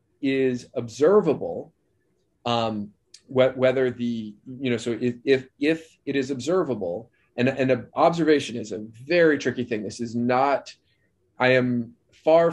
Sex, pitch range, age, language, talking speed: male, 115-130 Hz, 30-49, English, 140 wpm